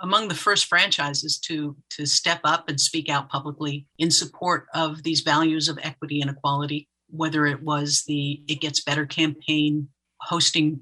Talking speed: 165 wpm